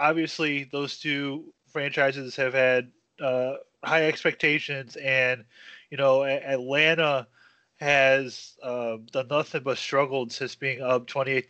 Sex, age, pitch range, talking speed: male, 20-39, 125-145 Hz, 120 wpm